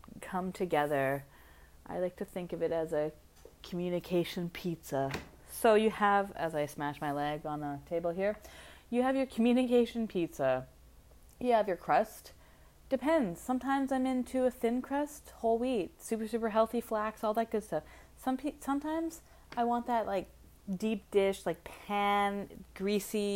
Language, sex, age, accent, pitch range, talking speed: English, female, 20-39, American, 155-215 Hz, 155 wpm